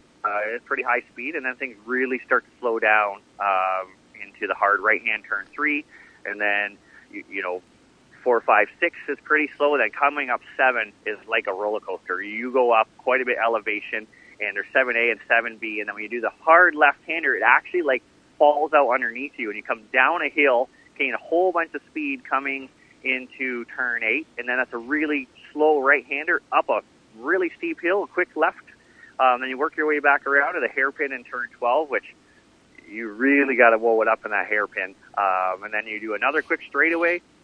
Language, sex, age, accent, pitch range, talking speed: English, male, 30-49, American, 105-145 Hz, 210 wpm